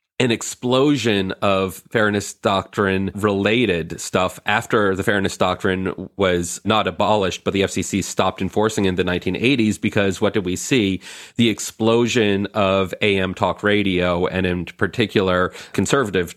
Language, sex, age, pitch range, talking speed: English, male, 30-49, 95-120 Hz, 135 wpm